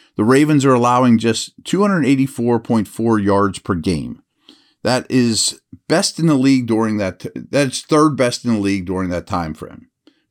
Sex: male